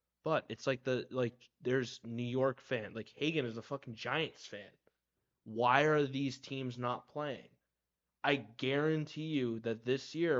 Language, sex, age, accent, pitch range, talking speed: English, male, 20-39, American, 115-135 Hz, 160 wpm